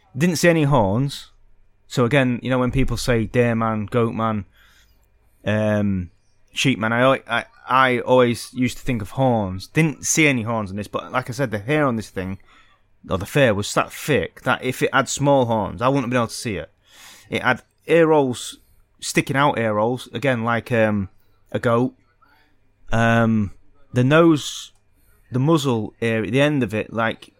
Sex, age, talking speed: male, 30-49, 185 wpm